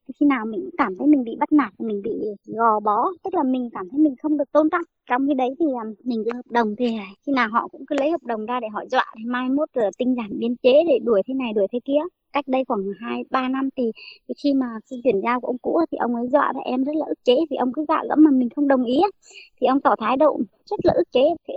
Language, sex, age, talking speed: Vietnamese, male, 20-39, 285 wpm